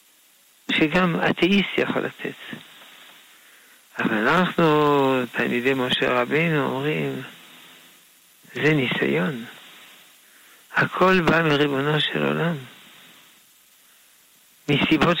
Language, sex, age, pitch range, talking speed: Hebrew, male, 60-79, 140-185 Hz, 70 wpm